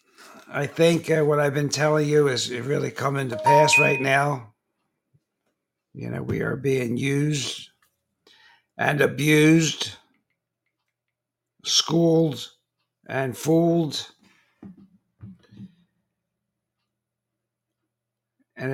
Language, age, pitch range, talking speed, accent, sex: English, 60-79, 120-160 Hz, 90 wpm, American, male